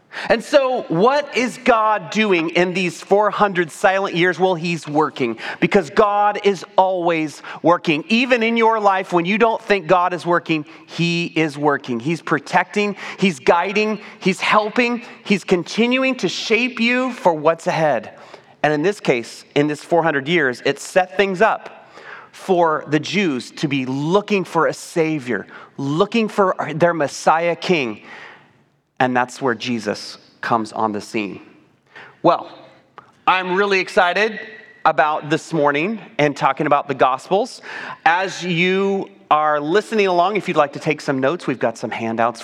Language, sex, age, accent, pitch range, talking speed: English, male, 30-49, American, 150-205 Hz, 155 wpm